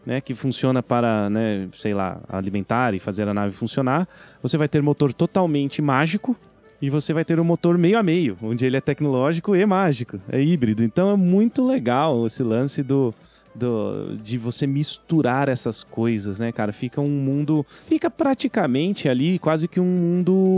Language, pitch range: Portuguese, 115-165 Hz